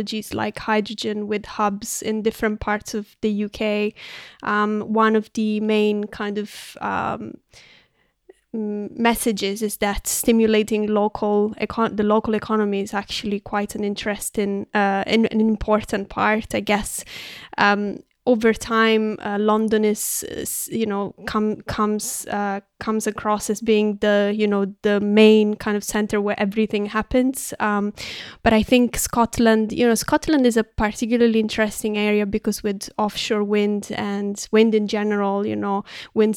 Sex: female